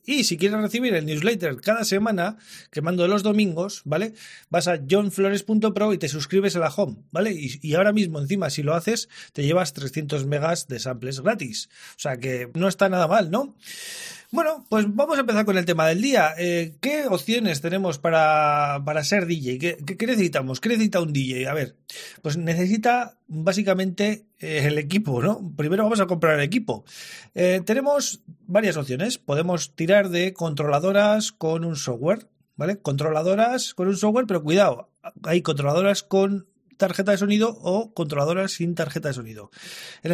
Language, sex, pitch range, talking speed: Spanish, male, 160-210 Hz, 170 wpm